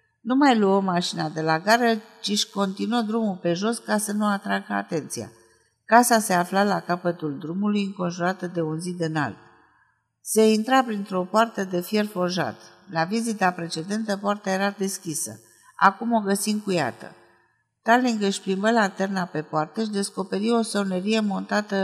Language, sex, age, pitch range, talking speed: Romanian, female, 50-69, 170-215 Hz, 155 wpm